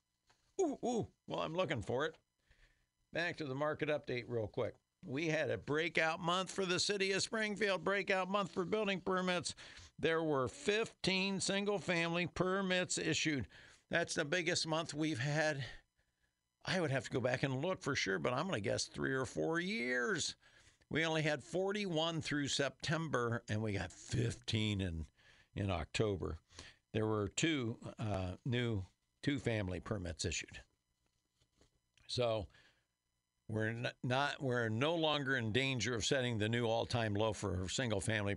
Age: 60-79